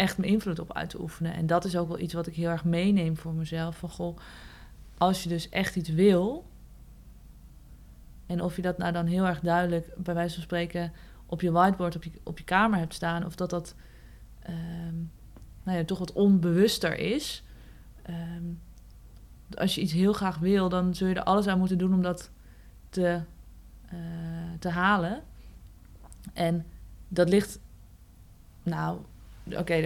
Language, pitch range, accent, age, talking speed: Dutch, 165-190 Hz, Dutch, 20-39, 175 wpm